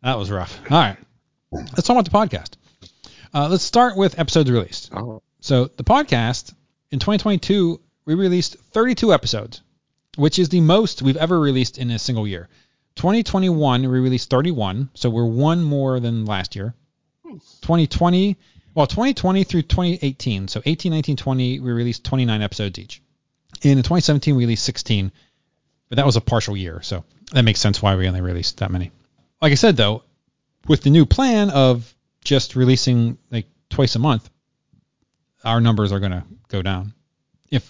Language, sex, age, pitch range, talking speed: English, male, 30-49, 110-150 Hz, 165 wpm